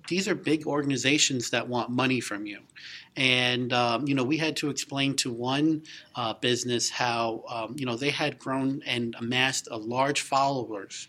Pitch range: 120-150 Hz